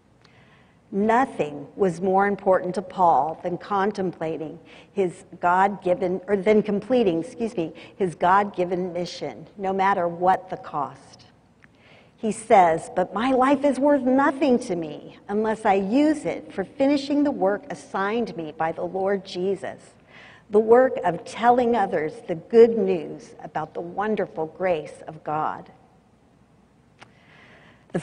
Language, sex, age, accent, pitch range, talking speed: English, female, 50-69, American, 175-245 Hz, 135 wpm